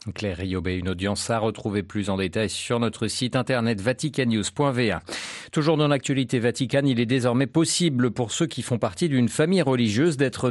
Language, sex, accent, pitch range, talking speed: French, male, French, 110-145 Hz, 175 wpm